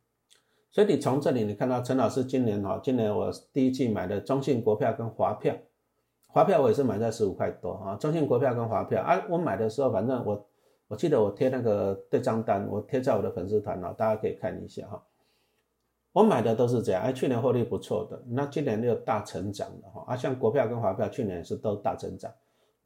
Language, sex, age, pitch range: Chinese, male, 50-69, 110-145 Hz